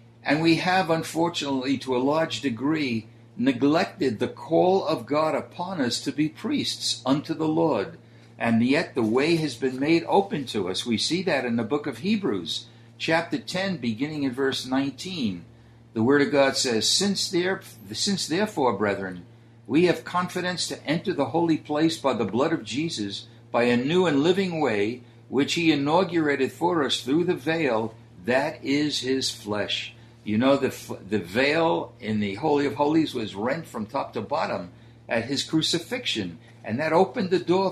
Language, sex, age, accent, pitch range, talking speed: English, male, 60-79, American, 115-165 Hz, 175 wpm